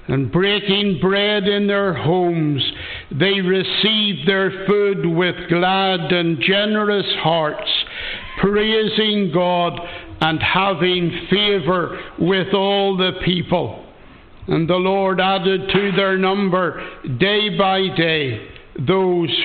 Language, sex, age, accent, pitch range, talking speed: English, male, 60-79, American, 160-185 Hz, 110 wpm